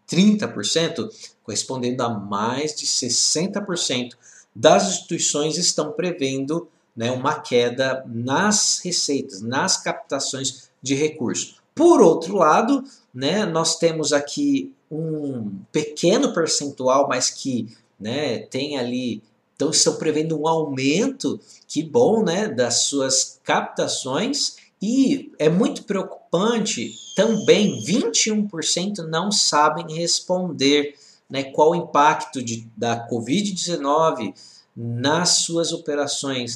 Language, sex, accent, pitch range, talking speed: Portuguese, male, Brazilian, 130-175 Hz, 100 wpm